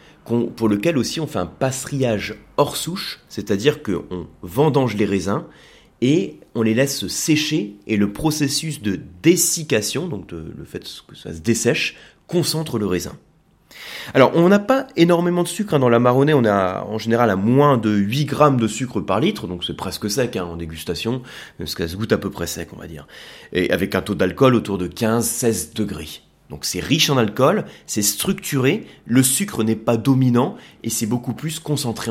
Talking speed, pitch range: 190 wpm, 105-150 Hz